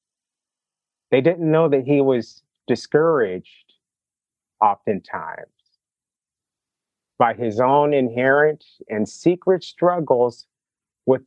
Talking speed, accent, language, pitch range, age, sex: 85 wpm, American, English, 110-145 Hz, 30-49, male